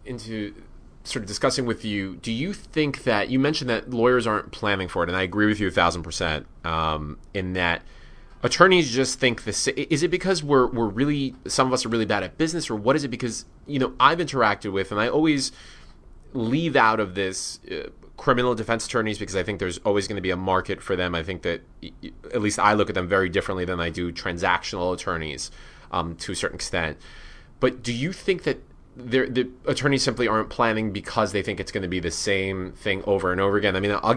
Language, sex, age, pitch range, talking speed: English, male, 20-39, 95-125 Hz, 225 wpm